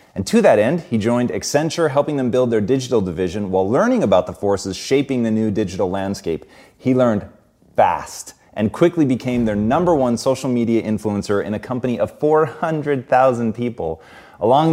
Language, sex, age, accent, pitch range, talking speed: English, male, 30-49, American, 105-145 Hz, 170 wpm